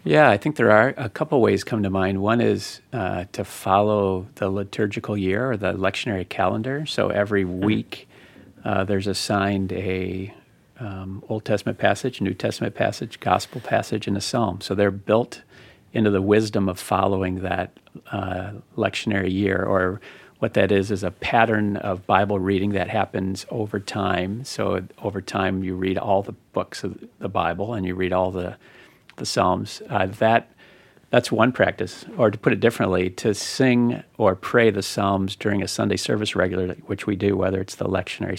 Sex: male